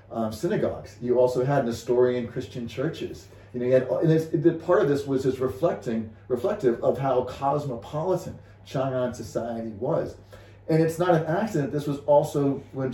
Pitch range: 115-140 Hz